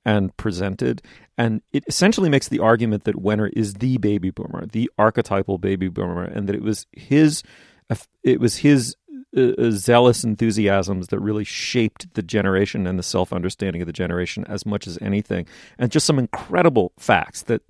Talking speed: 175 wpm